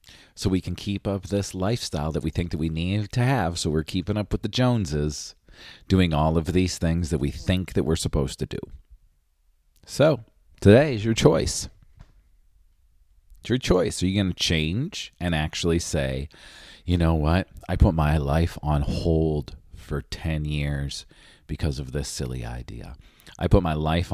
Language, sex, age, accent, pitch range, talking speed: English, male, 40-59, American, 70-90 Hz, 180 wpm